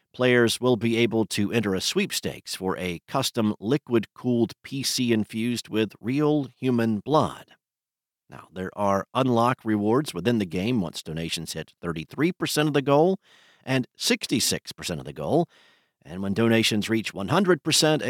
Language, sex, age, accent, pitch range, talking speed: English, male, 50-69, American, 110-145 Hz, 145 wpm